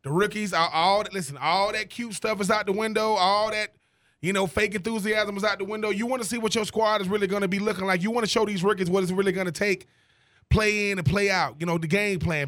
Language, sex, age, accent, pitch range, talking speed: English, male, 20-39, American, 185-230 Hz, 285 wpm